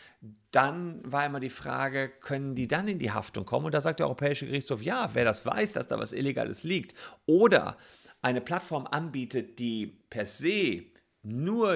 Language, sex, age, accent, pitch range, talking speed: German, male, 50-69, German, 105-140 Hz, 180 wpm